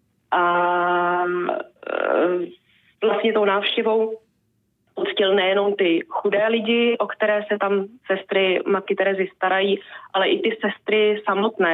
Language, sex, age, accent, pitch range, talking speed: Czech, female, 20-39, native, 185-210 Hz, 110 wpm